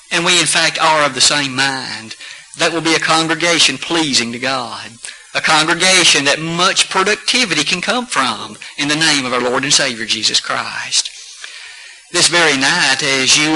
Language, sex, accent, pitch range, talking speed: English, male, American, 140-180 Hz, 175 wpm